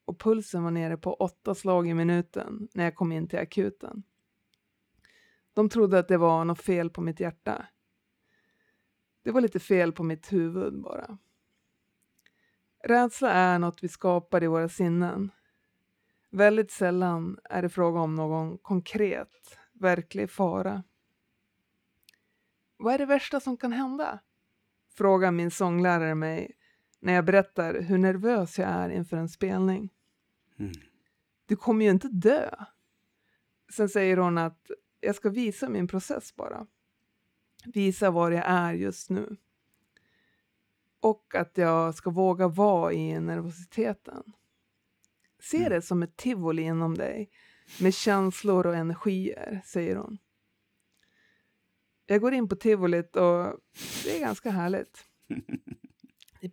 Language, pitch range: Swedish, 170-205 Hz